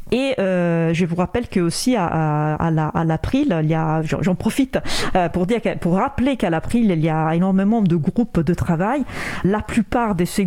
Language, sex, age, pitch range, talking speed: French, female, 40-59, 170-220 Hz, 210 wpm